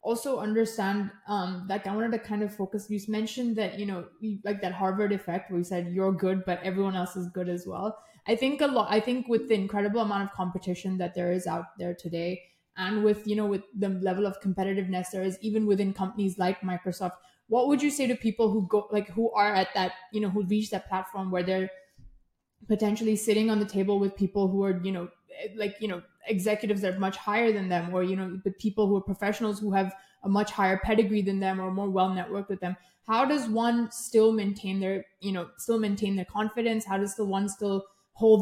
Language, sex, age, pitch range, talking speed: English, female, 20-39, 190-215 Hz, 230 wpm